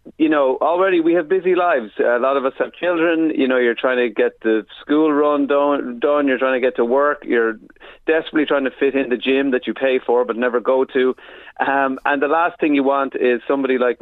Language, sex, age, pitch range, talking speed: English, male, 40-59, 120-175 Hz, 240 wpm